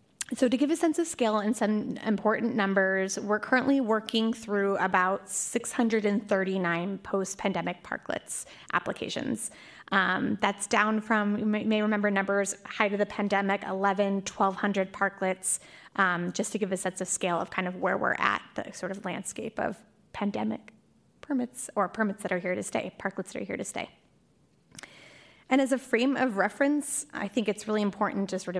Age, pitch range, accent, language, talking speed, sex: 20-39, 190-230 Hz, American, English, 170 wpm, female